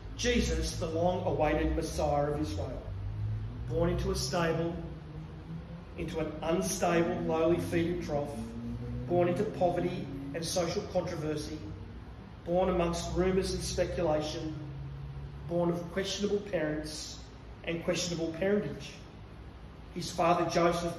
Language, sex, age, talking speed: English, male, 40-59, 110 wpm